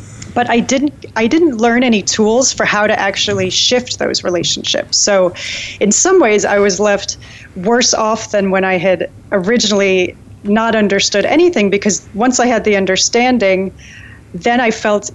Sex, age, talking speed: female, 30-49, 160 wpm